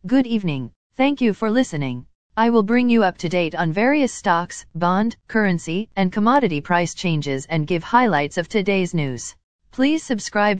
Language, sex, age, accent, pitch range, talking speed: English, female, 40-59, American, 165-225 Hz, 170 wpm